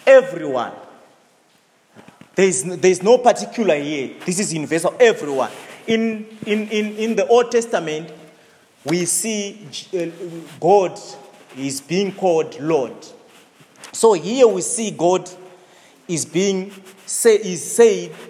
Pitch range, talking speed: 165-215 Hz, 115 wpm